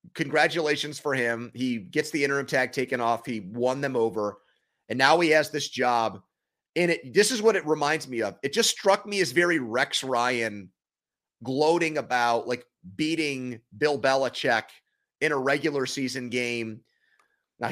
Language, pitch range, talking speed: English, 130-175 Hz, 165 wpm